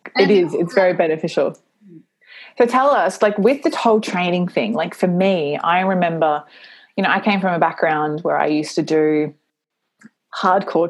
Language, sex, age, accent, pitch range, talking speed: English, female, 20-39, Australian, 170-215 Hz, 175 wpm